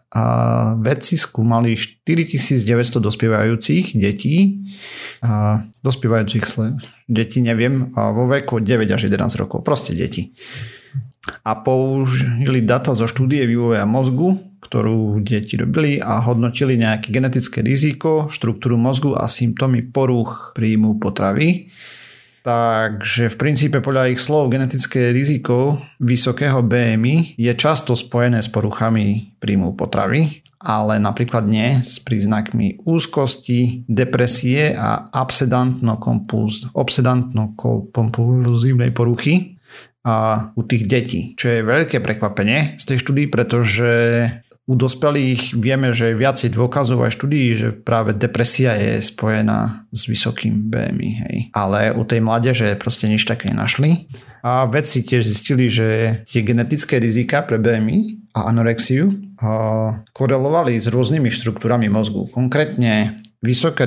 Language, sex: Slovak, male